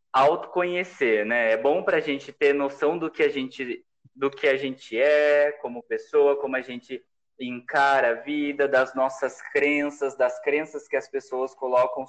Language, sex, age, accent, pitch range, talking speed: Portuguese, male, 20-39, Brazilian, 140-215 Hz, 175 wpm